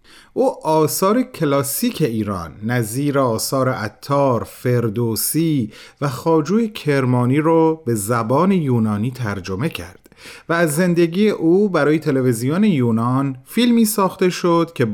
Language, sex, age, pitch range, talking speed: Persian, male, 30-49, 115-160 Hz, 110 wpm